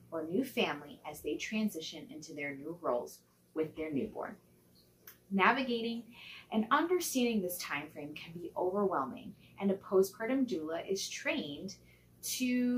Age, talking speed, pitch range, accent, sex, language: 20-39, 130 wpm, 155-230 Hz, American, female, English